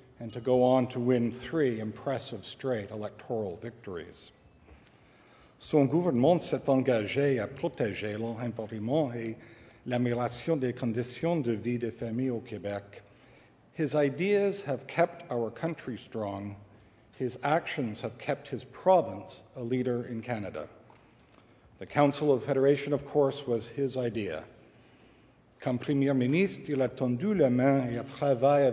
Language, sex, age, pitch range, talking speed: English, male, 60-79, 115-140 Hz, 135 wpm